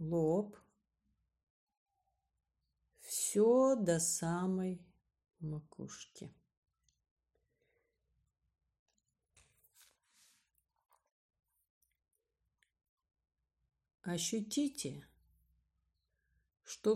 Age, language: 50-69, Russian